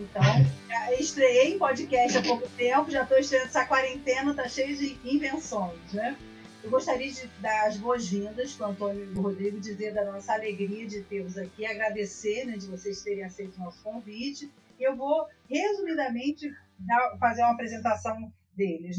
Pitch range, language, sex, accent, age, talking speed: 200-260 Hz, Portuguese, female, Brazilian, 40-59, 170 wpm